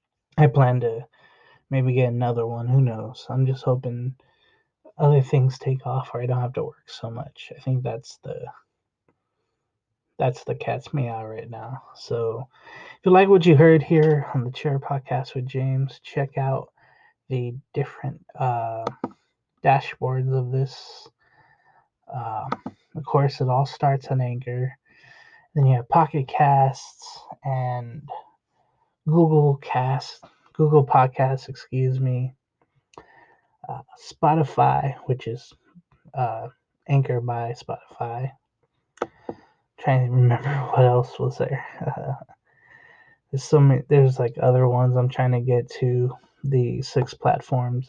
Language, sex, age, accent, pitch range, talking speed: English, male, 20-39, American, 125-145 Hz, 135 wpm